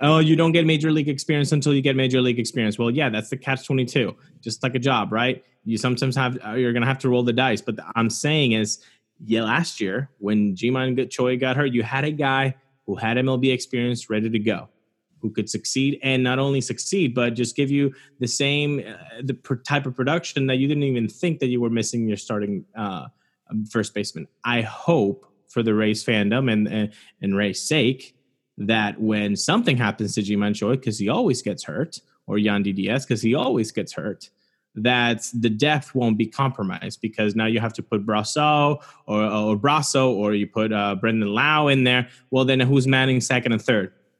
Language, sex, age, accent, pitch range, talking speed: English, male, 20-39, American, 110-135 Hz, 210 wpm